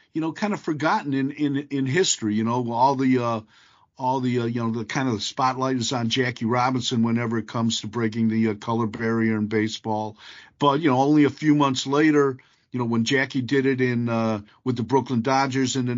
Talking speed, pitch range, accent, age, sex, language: 230 wpm, 115-135 Hz, American, 50-69, male, English